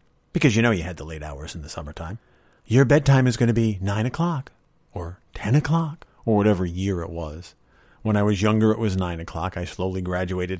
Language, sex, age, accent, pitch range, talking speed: English, male, 40-59, American, 95-140 Hz, 215 wpm